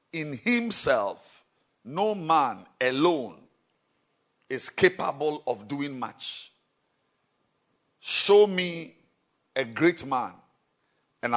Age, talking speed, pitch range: 50-69, 85 wpm, 130-180 Hz